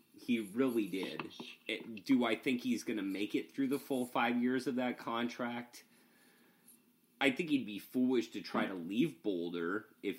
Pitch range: 90-130 Hz